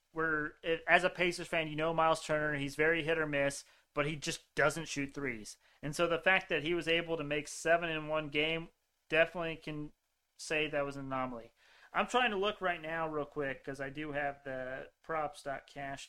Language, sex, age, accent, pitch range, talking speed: English, male, 30-49, American, 145-185 Hz, 200 wpm